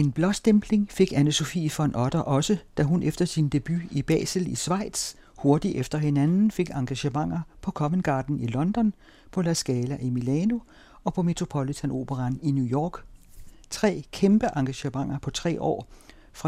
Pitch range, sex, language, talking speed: 130-170 Hz, male, Danish, 165 wpm